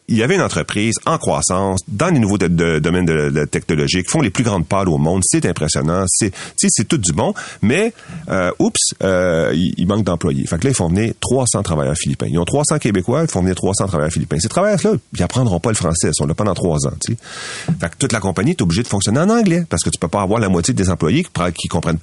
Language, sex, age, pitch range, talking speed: French, male, 40-59, 85-130 Hz, 260 wpm